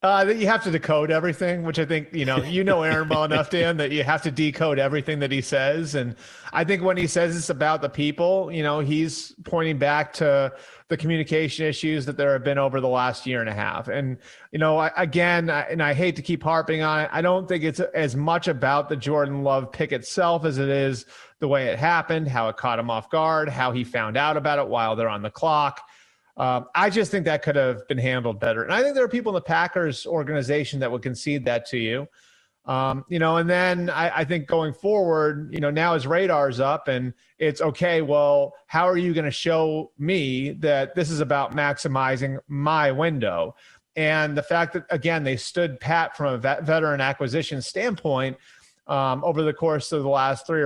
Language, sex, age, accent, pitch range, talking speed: English, male, 30-49, American, 140-165 Hz, 225 wpm